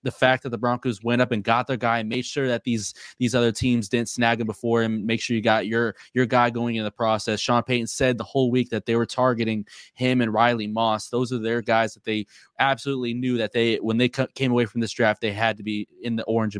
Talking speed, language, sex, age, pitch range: 270 wpm, English, male, 20-39, 110-125 Hz